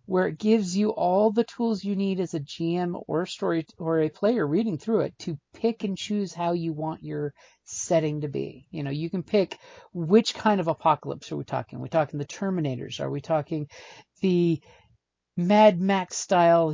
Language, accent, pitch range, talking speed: English, American, 155-195 Hz, 200 wpm